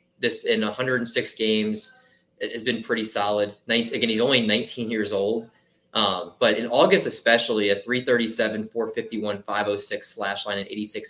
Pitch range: 105-120 Hz